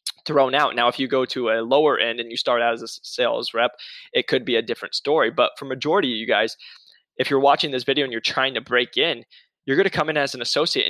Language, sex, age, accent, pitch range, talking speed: English, male, 20-39, American, 120-135 Hz, 270 wpm